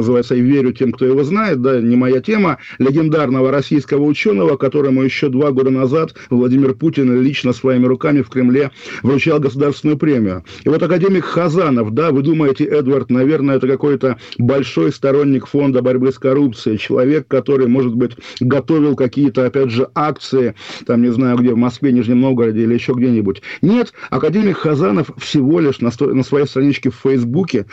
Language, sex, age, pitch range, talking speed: Russian, male, 50-69, 125-145 Hz, 165 wpm